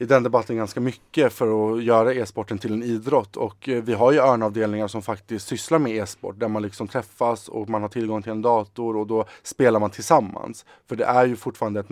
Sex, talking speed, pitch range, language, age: male, 220 wpm, 110-120 Hz, English, 20-39